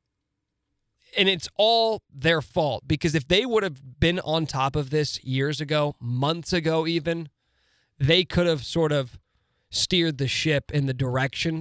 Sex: male